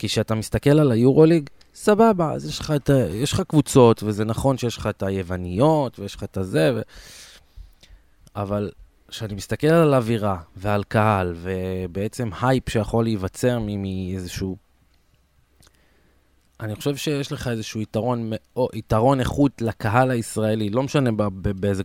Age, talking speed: 20-39, 145 wpm